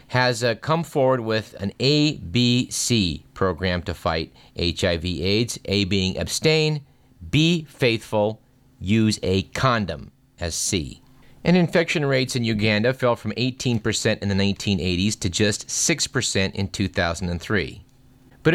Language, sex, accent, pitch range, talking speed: English, male, American, 100-145 Hz, 125 wpm